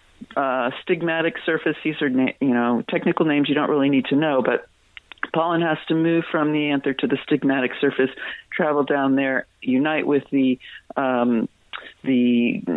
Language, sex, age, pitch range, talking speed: English, female, 50-69, 135-165 Hz, 165 wpm